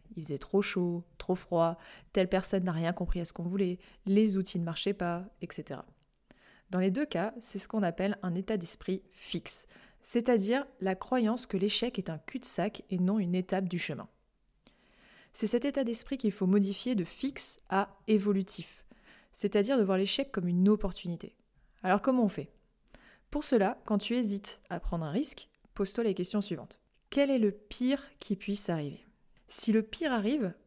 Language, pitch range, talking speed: French, 180-220 Hz, 180 wpm